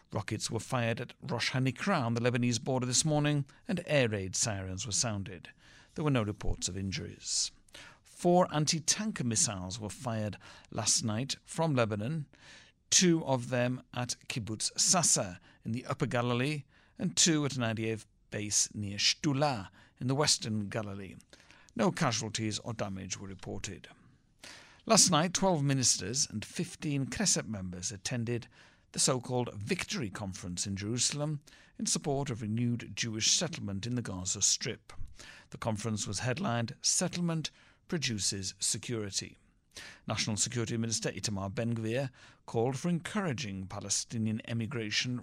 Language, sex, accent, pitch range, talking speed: English, male, British, 105-145 Hz, 135 wpm